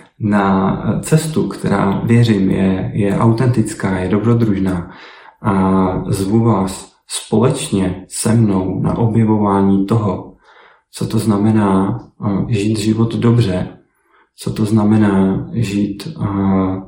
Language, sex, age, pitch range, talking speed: Czech, male, 40-59, 100-115 Hz, 100 wpm